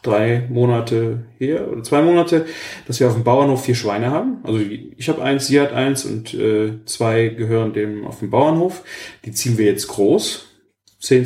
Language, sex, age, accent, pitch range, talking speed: German, male, 30-49, German, 115-145 Hz, 185 wpm